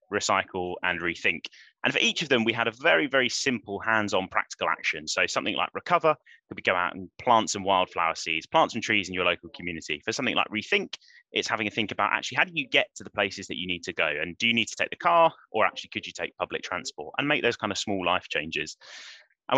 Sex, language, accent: male, English, British